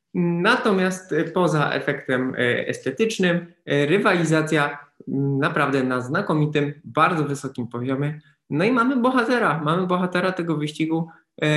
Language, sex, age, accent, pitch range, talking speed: Polish, male, 20-39, native, 135-160 Hz, 100 wpm